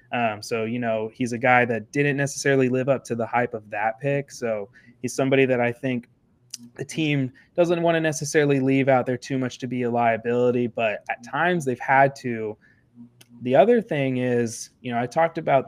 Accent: American